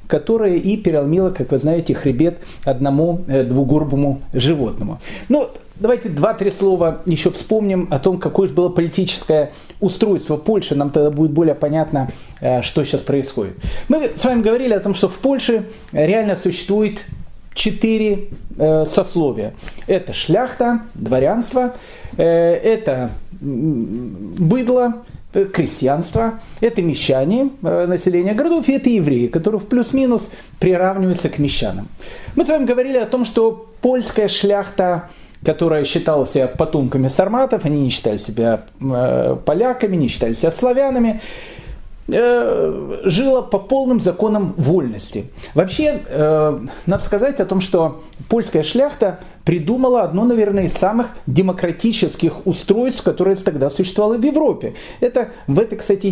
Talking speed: 125 wpm